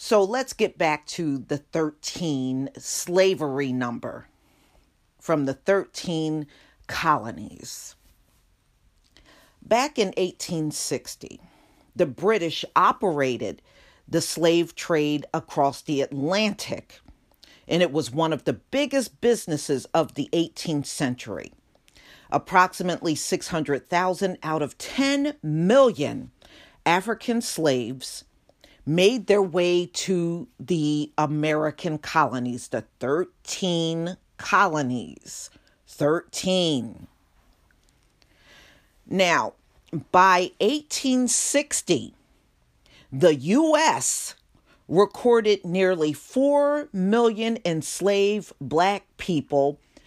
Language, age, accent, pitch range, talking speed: English, 50-69, American, 150-210 Hz, 80 wpm